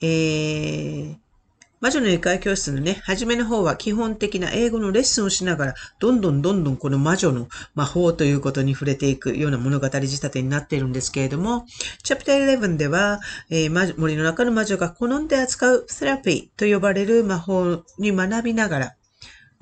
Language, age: Japanese, 40-59